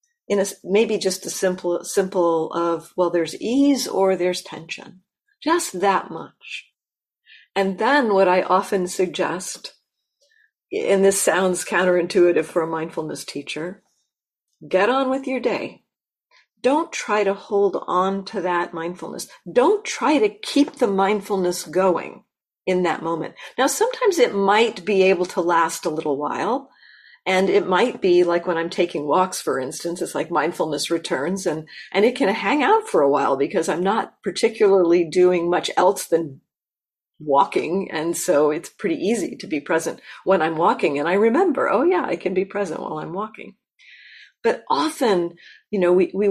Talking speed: 165 wpm